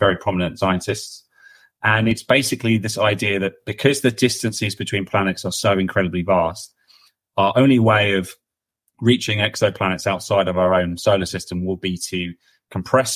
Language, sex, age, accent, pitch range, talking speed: English, male, 30-49, British, 95-110 Hz, 155 wpm